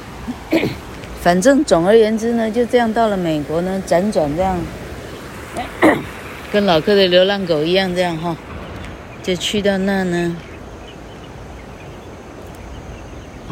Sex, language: female, Chinese